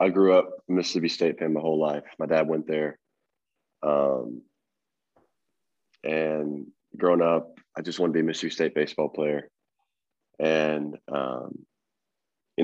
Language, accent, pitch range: English, American, 75-80 Hz